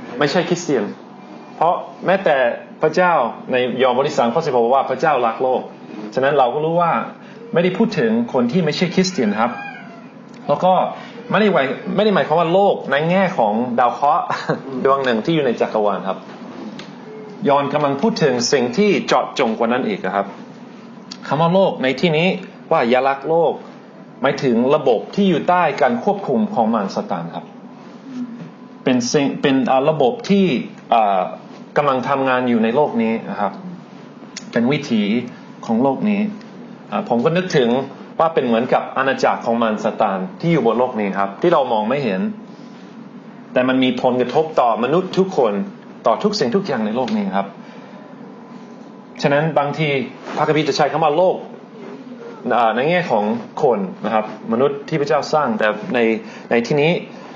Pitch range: 145-230 Hz